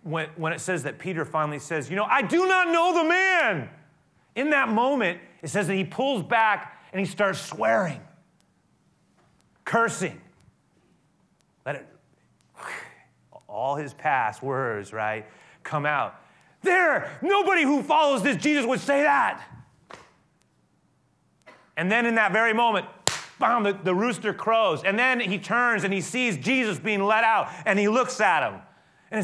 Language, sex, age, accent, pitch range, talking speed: English, male, 30-49, American, 190-260 Hz, 155 wpm